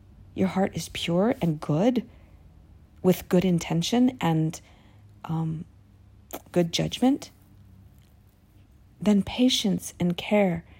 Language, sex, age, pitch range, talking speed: English, female, 40-59, 155-200 Hz, 95 wpm